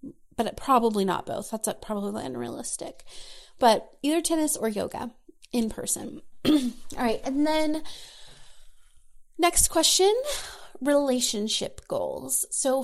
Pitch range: 215-280 Hz